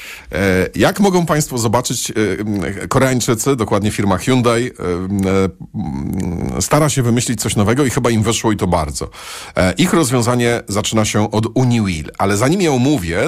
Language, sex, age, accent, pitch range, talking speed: Polish, male, 40-59, native, 95-130 Hz, 135 wpm